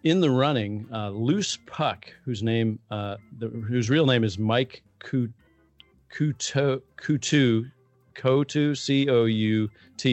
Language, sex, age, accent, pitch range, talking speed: English, male, 40-59, American, 110-130 Hz, 130 wpm